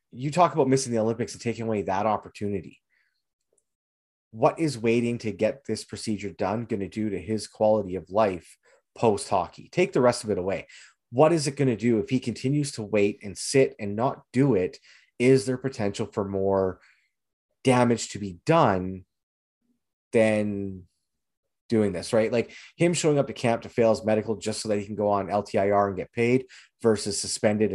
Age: 30-49